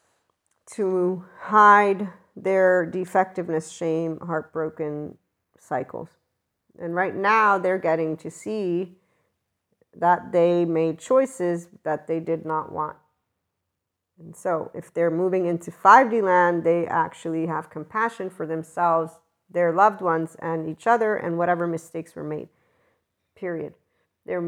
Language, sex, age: English, female, 50-69